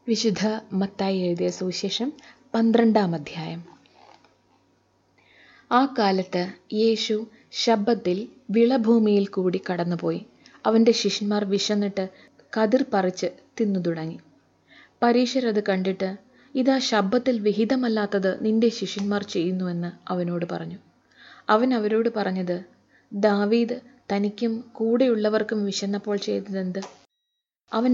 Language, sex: Malayalam, female